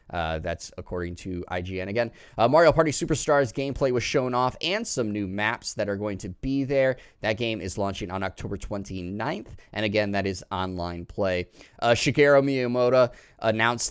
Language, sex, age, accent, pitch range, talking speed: English, male, 20-39, American, 100-125 Hz, 175 wpm